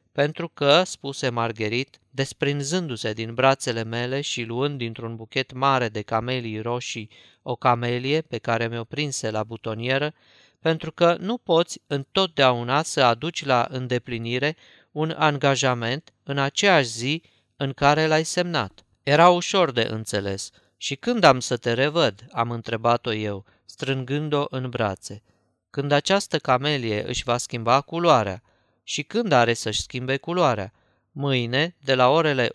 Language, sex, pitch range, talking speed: Romanian, male, 115-145 Hz, 140 wpm